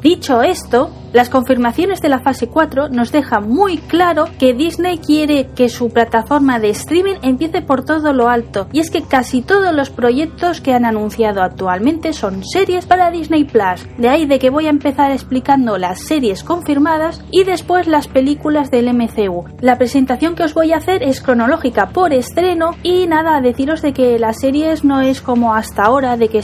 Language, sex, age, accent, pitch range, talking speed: Spanish, female, 20-39, Spanish, 235-320 Hz, 190 wpm